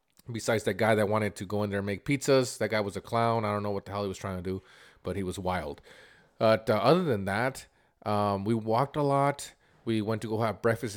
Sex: male